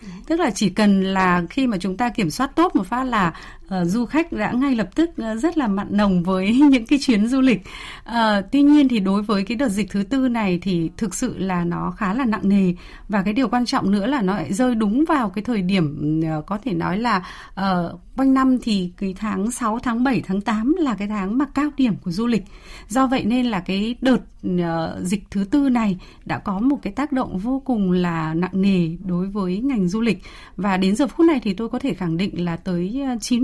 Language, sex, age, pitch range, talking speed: Vietnamese, female, 20-39, 195-255 Hz, 240 wpm